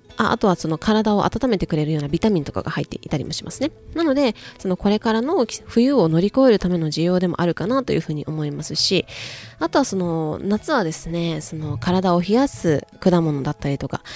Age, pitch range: 20-39, 155-220 Hz